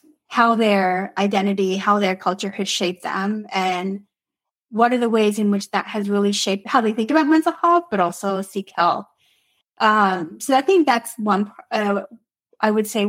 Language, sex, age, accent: English, female, 20-39, American